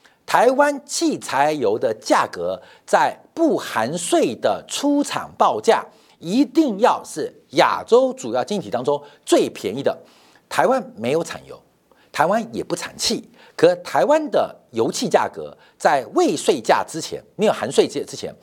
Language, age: Chinese, 50-69